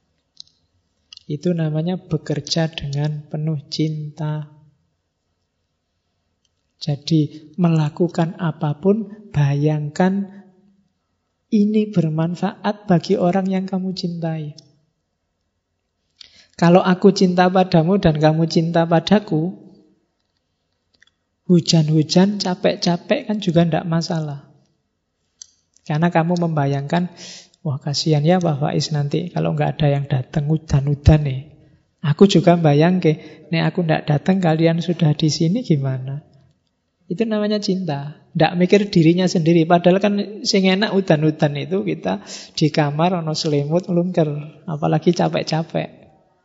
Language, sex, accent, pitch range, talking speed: Indonesian, male, native, 145-180 Hz, 105 wpm